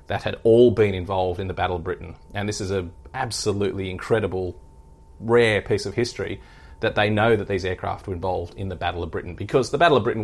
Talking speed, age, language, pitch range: 225 wpm, 30-49, English, 90-110 Hz